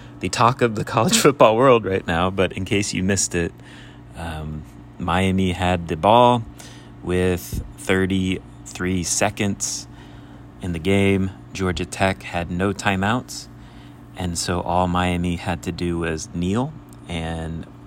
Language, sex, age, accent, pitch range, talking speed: English, male, 30-49, American, 80-105 Hz, 140 wpm